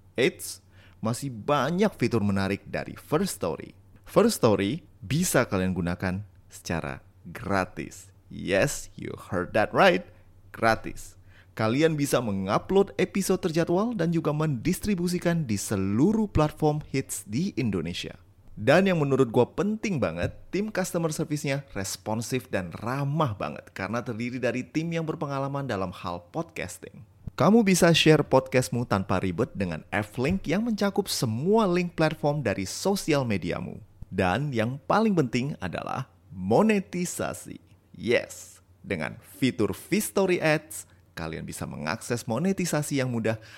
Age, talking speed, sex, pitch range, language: 30-49, 125 wpm, male, 100-160 Hz, Indonesian